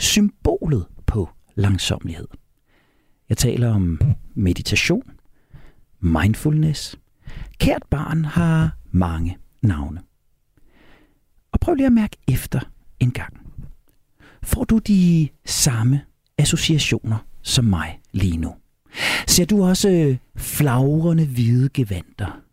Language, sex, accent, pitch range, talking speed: Danish, male, native, 105-165 Hz, 95 wpm